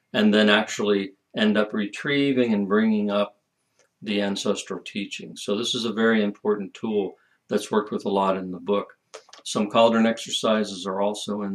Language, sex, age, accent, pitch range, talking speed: English, male, 50-69, American, 100-130 Hz, 170 wpm